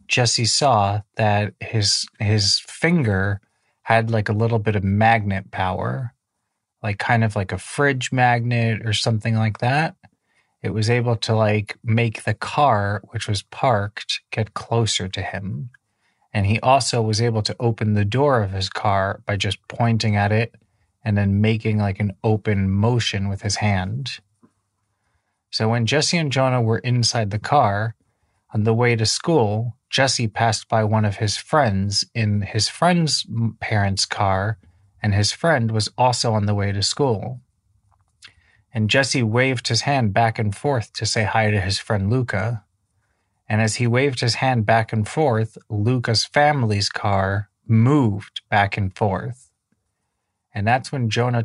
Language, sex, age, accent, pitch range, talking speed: English, male, 30-49, American, 100-120 Hz, 160 wpm